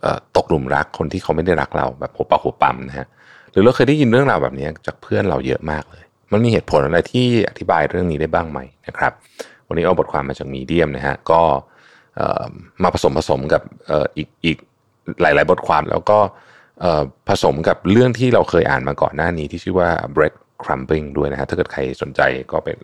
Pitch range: 70-95 Hz